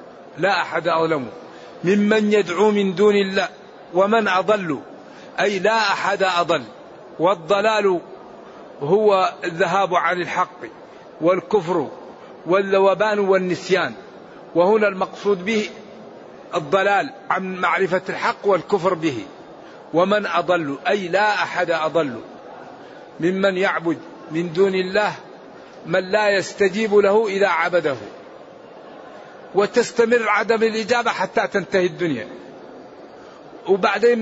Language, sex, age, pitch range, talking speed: Arabic, male, 50-69, 180-215 Hz, 95 wpm